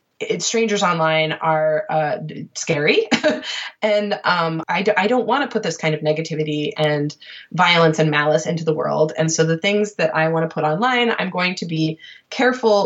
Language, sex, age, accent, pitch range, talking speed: English, female, 20-39, American, 155-190 Hz, 185 wpm